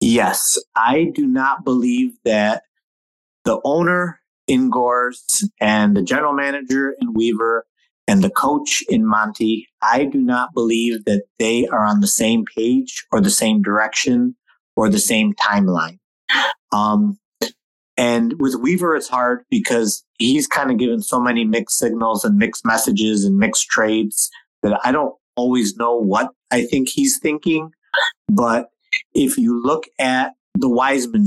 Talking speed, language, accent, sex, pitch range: 150 wpm, English, American, male, 110-180 Hz